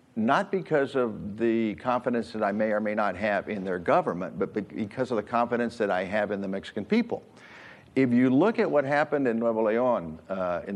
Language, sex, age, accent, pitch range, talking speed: English, male, 50-69, American, 105-125 Hz, 205 wpm